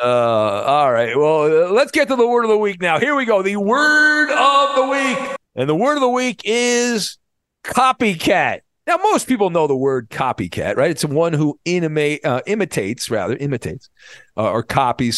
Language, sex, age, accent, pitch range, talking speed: English, male, 50-69, American, 125-195 Hz, 195 wpm